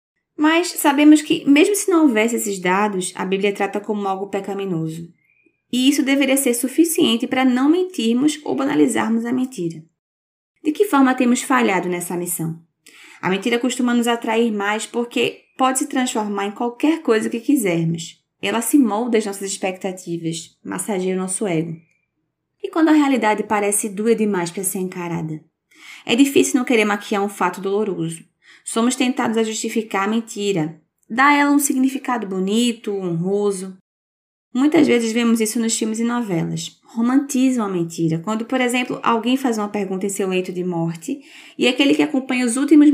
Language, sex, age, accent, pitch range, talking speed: Portuguese, female, 20-39, Brazilian, 195-260 Hz, 165 wpm